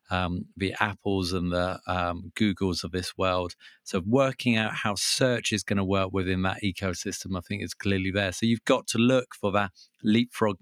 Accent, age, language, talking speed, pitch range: British, 40-59, English, 200 wpm, 95-120 Hz